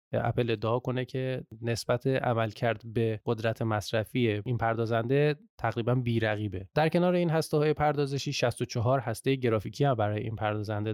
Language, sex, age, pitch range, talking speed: Persian, male, 20-39, 115-140 Hz, 145 wpm